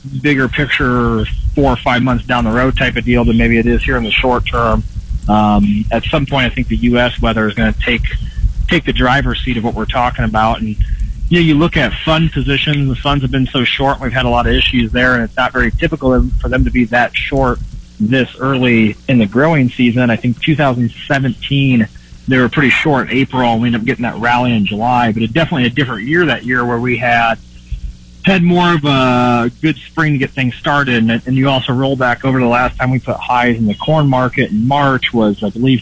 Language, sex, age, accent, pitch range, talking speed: English, male, 30-49, American, 115-135 Hz, 240 wpm